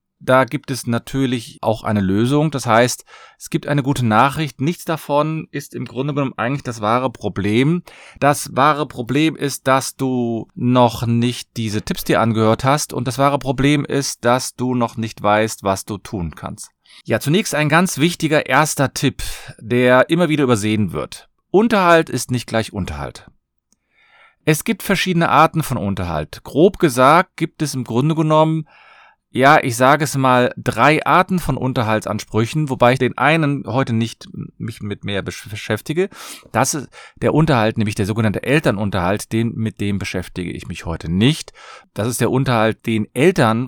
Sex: male